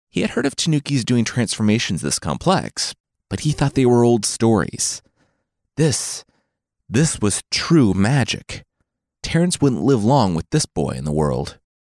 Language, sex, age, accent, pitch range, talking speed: English, male, 30-49, American, 90-140 Hz, 160 wpm